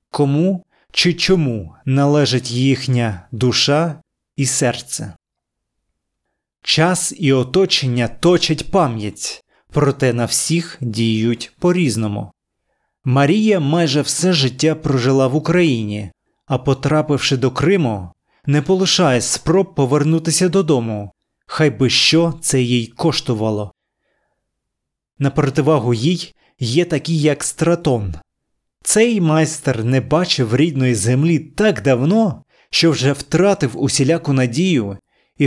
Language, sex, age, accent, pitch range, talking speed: Ukrainian, male, 30-49, native, 120-160 Hz, 105 wpm